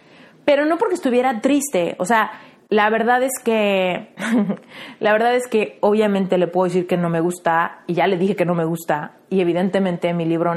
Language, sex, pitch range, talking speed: Spanish, female, 185-250 Hz, 200 wpm